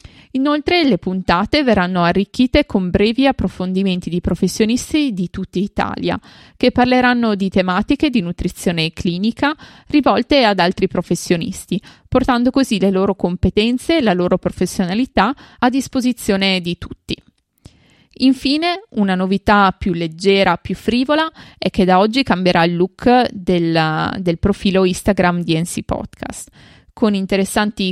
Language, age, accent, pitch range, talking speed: Italian, 20-39, native, 185-250 Hz, 130 wpm